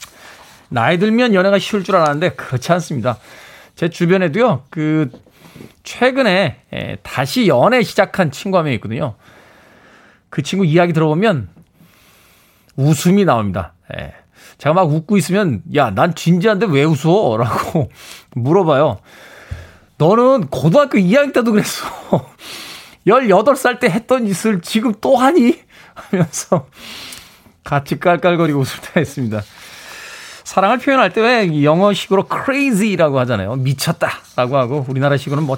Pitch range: 135-190 Hz